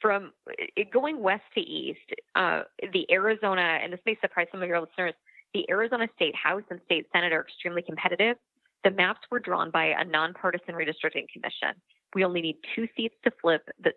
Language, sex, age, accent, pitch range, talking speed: English, female, 20-39, American, 165-200 Hz, 195 wpm